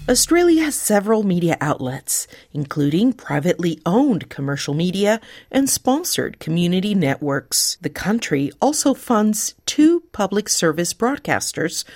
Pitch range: 155-250 Hz